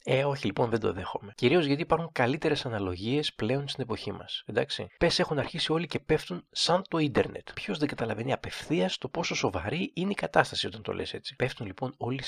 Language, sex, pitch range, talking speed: Greek, male, 120-155 Hz, 205 wpm